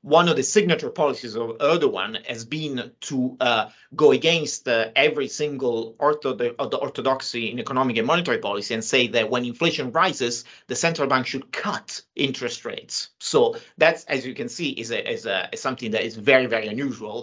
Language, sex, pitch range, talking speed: English, male, 115-155 Hz, 175 wpm